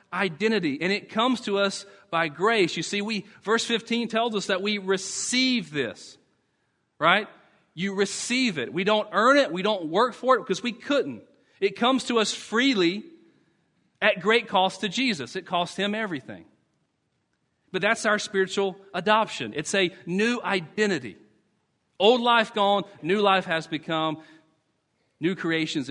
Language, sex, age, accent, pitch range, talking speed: English, male, 40-59, American, 175-230 Hz, 155 wpm